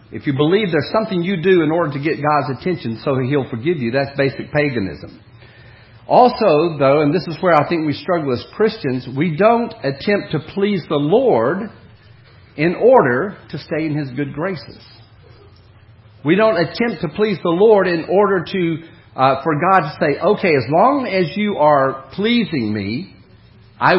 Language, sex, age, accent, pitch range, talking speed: English, male, 50-69, American, 115-195 Hz, 180 wpm